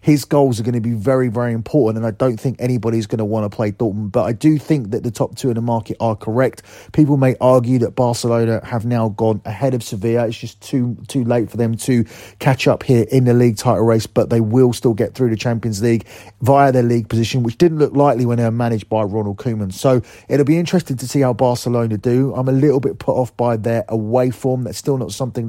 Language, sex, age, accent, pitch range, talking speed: English, male, 30-49, British, 110-130 Hz, 250 wpm